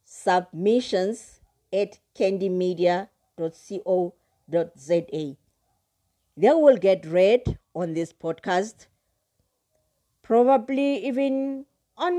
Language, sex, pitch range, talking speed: English, female, 160-220 Hz, 65 wpm